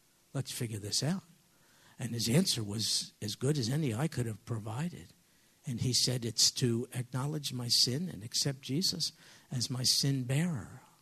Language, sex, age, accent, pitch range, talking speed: English, male, 60-79, American, 125-165 Hz, 170 wpm